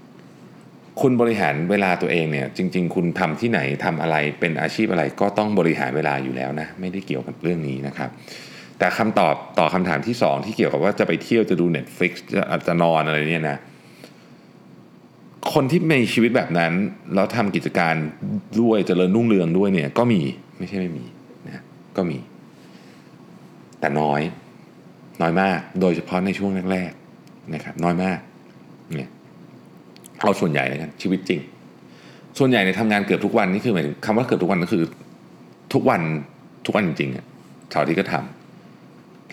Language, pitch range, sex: Thai, 80-115 Hz, male